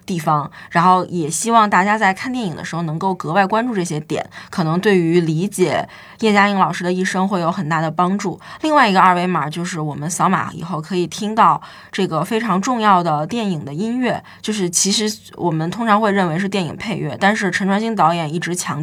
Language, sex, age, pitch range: Chinese, female, 20-39, 170-205 Hz